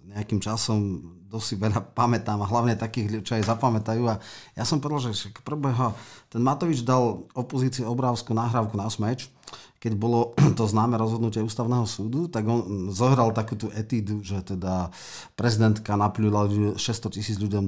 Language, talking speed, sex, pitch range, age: Slovak, 155 wpm, male, 105-125 Hz, 40-59